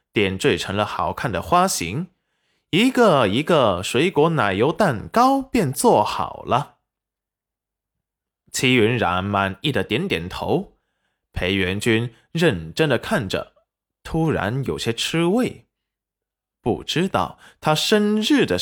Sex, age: male, 20-39